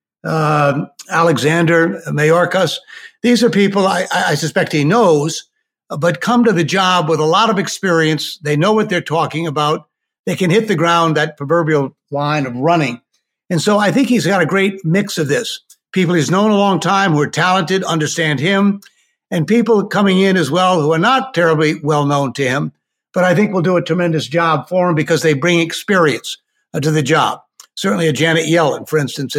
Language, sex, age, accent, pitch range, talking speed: English, male, 60-79, American, 155-195 Hz, 195 wpm